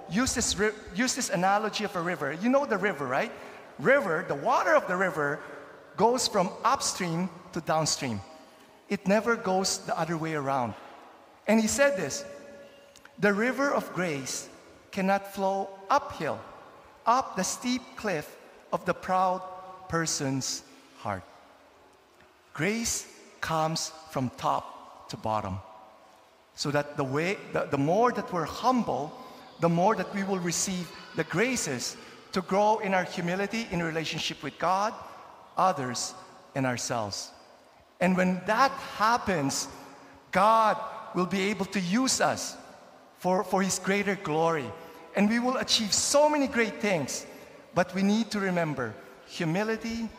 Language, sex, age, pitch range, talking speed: English, male, 50-69, 160-220 Hz, 140 wpm